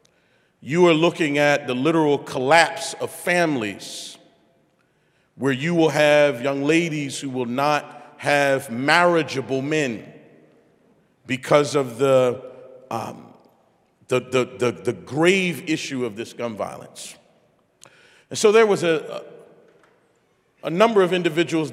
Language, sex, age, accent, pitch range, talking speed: English, male, 40-59, American, 130-180 Hz, 120 wpm